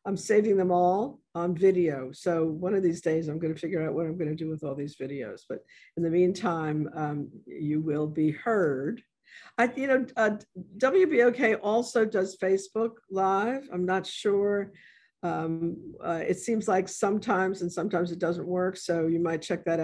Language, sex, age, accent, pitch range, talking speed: English, female, 50-69, American, 160-200 Hz, 185 wpm